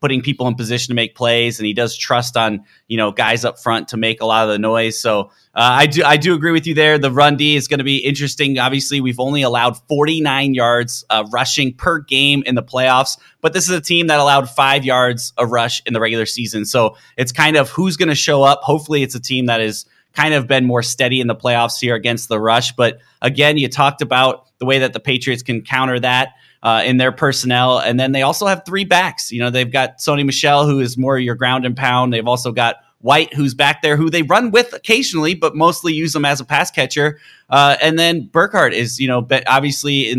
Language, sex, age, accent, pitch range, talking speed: English, male, 30-49, American, 120-145 Hz, 245 wpm